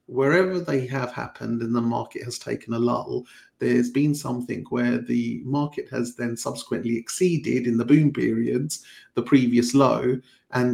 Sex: male